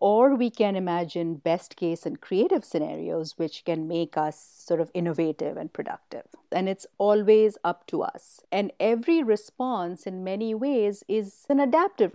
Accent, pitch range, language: Indian, 170-225 Hz, English